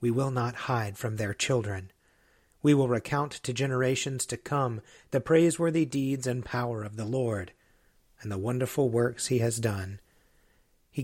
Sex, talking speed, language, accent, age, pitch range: male, 165 wpm, English, American, 40-59, 115-135 Hz